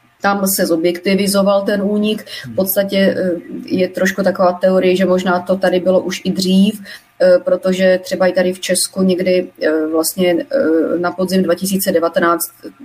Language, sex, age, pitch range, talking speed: Slovak, female, 30-49, 180-195 Hz, 140 wpm